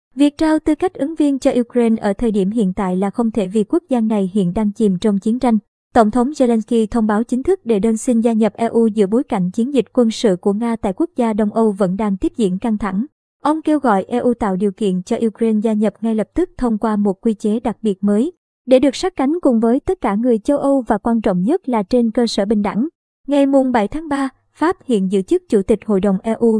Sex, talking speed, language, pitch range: male, 255 wpm, Vietnamese, 215-255 Hz